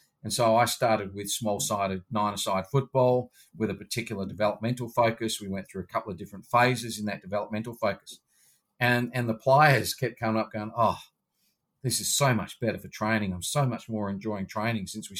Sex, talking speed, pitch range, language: male, 195 wpm, 105-120 Hz, English